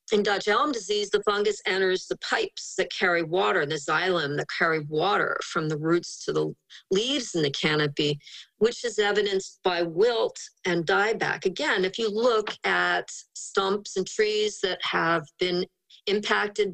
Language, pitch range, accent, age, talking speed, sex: English, 160-225 Hz, American, 40-59, 160 wpm, female